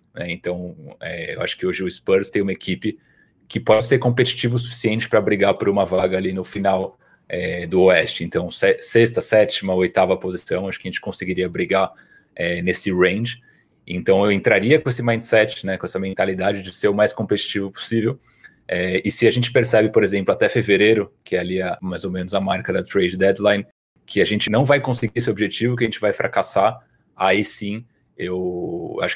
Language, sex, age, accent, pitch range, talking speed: Portuguese, male, 30-49, Brazilian, 95-120 Hz, 190 wpm